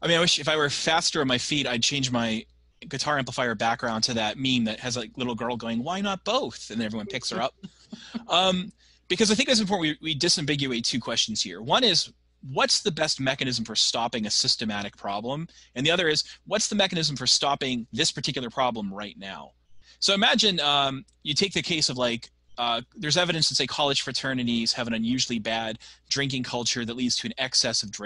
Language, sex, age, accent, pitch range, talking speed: English, male, 30-49, American, 115-160 Hz, 215 wpm